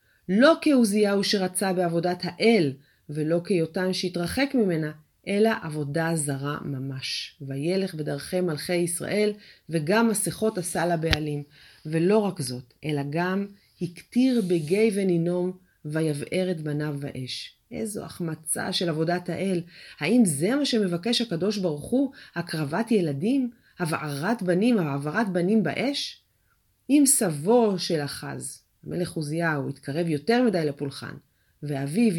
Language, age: Hebrew, 30-49